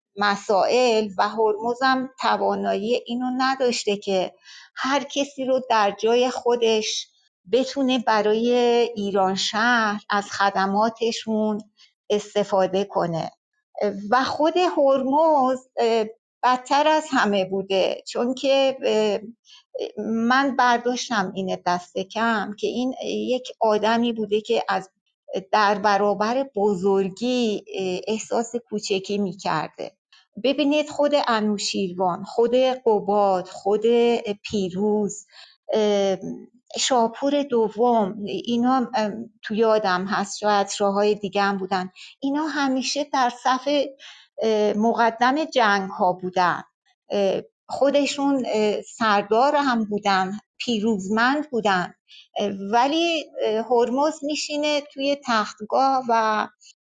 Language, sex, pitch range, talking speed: Persian, female, 205-260 Hz, 90 wpm